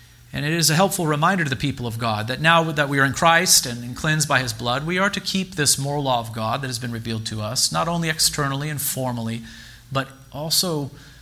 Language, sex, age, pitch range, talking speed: English, male, 40-59, 120-155 Hz, 240 wpm